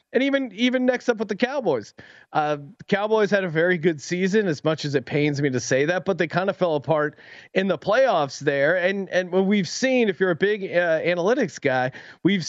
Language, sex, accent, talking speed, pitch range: English, male, American, 230 wpm, 160-215 Hz